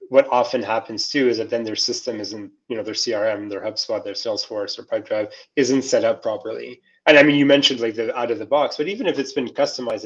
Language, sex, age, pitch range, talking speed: English, male, 20-39, 115-140 Hz, 245 wpm